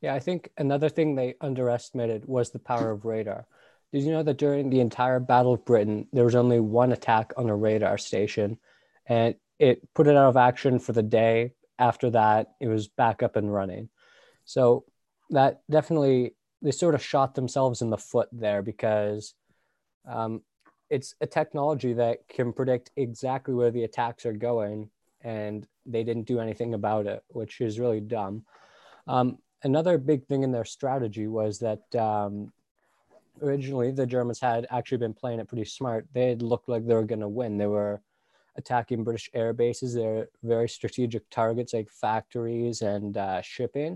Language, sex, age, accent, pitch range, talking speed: English, male, 20-39, American, 115-130 Hz, 175 wpm